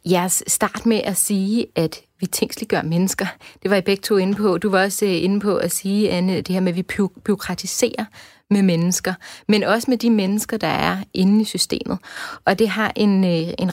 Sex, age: female, 30-49